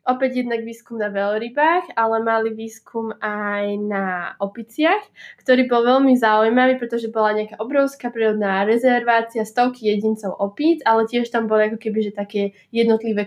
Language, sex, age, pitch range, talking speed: Slovak, female, 20-39, 210-255 Hz, 145 wpm